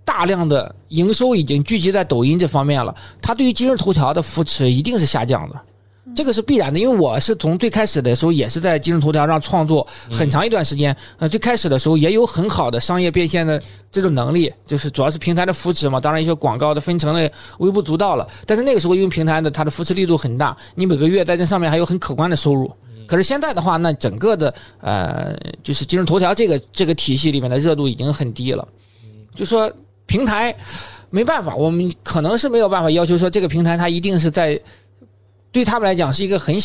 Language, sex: Chinese, male